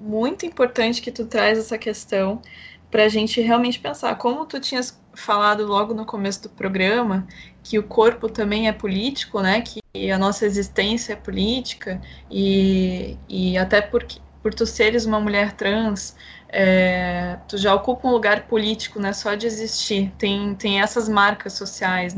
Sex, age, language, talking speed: female, 20-39, English, 160 wpm